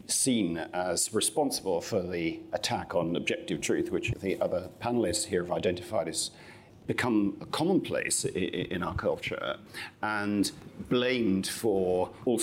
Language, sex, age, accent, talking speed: English, male, 50-69, British, 125 wpm